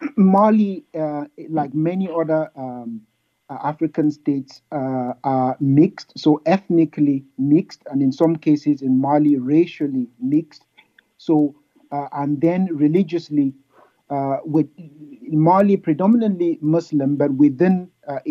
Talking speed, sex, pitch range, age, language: 115 wpm, male, 145-170 Hz, 50-69, English